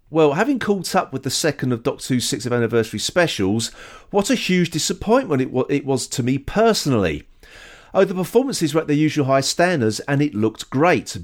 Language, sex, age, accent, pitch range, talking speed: English, male, 40-59, British, 110-155 Hz, 185 wpm